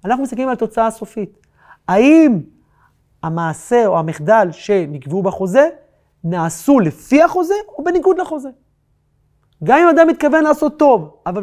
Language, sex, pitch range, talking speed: Hebrew, male, 170-260 Hz, 125 wpm